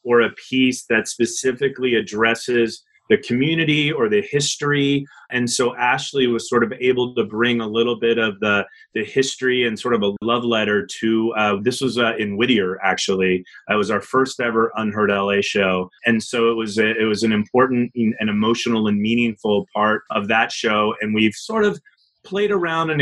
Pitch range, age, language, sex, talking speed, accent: 110-130 Hz, 30-49, English, male, 195 wpm, American